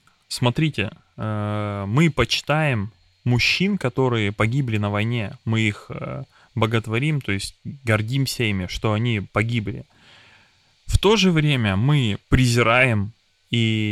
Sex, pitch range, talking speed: male, 105-125 Hz, 110 wpm